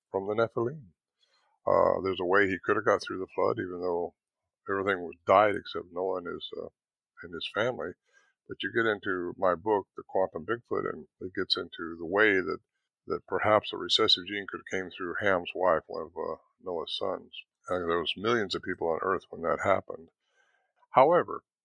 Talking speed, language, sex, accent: 195 wpm, English, male, American